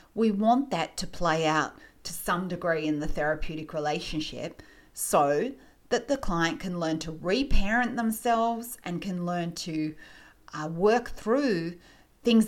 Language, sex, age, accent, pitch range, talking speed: English, female, 30-49, Australian, 160-195 Hz, 145 wpm